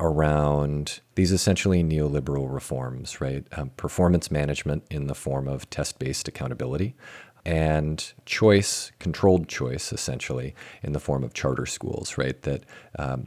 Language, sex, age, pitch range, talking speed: English, male, 40-59, 70-90 Hz, 130 wpm